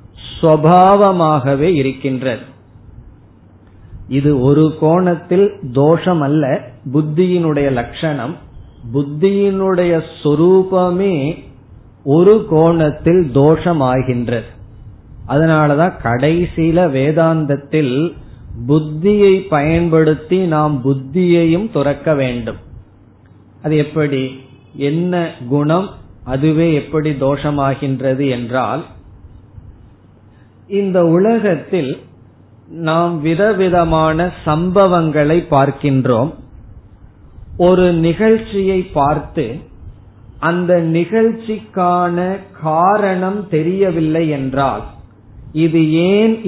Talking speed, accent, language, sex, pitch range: 60 wpm, native, Tamil, male, 130-170 Hz